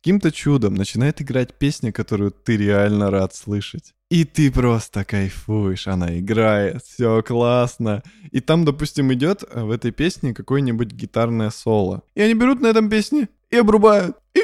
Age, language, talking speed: 20-39, Russian, 155 wpm